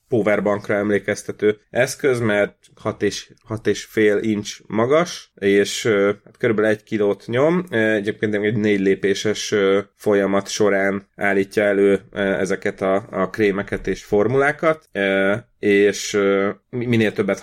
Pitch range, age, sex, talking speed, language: 95-110 Hz, 30-49, male, 130 wpm, Hungarian